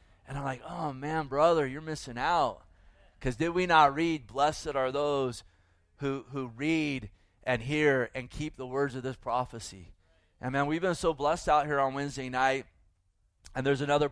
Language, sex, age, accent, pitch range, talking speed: English, male, 30-49, American, 130-155 Hz, 185 wpm